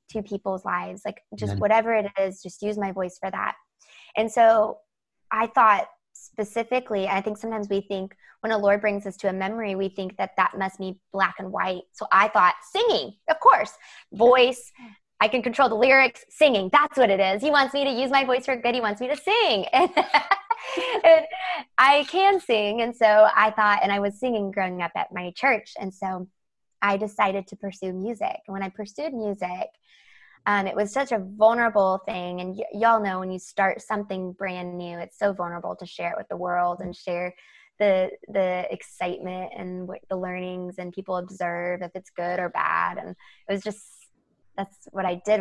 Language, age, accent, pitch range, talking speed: English, 20-39, American, 185-230 Hz, 200 wpm